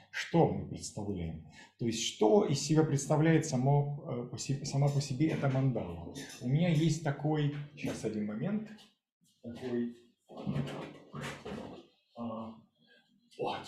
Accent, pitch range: native, 110-155 Hz